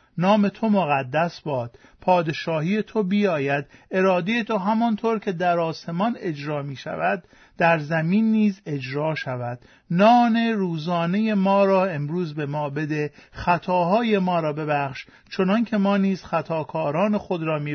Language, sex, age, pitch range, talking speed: Persian, male, 50-69, 145-200 Hz, 135 wpm